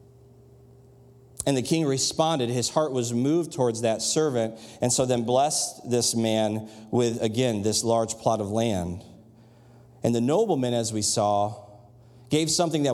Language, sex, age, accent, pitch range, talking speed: English, male, 40-59, American, 115-140 Hz, 155 wpm